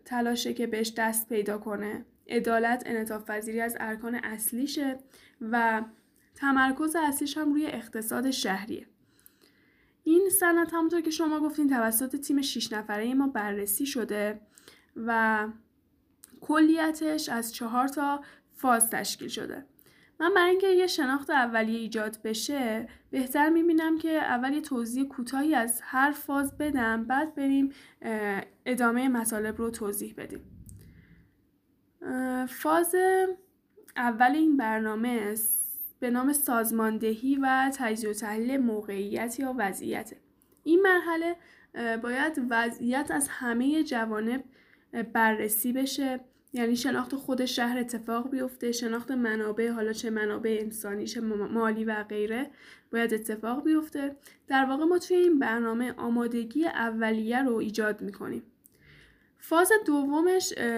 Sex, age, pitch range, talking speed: female, 10-29, 225-290 Hz, 120 wpm